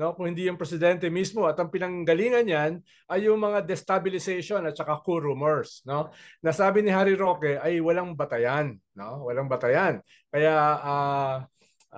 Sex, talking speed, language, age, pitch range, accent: male, 150 wpm, English, 20-39, 150-190 Hz, Filipino